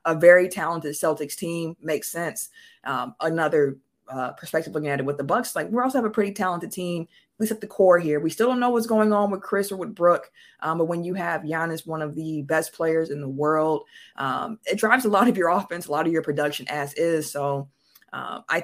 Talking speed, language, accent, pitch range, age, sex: 240 wpm, English, American, 155-205 Hz, 20-39, female